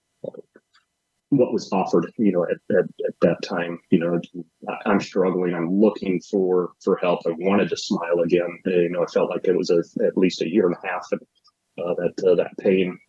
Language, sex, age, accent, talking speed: English, male, 30-49, American, 205 wpm